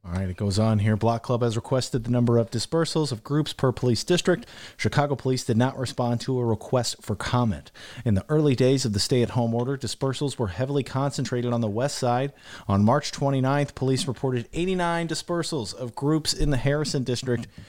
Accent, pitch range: American, 115-140 Hz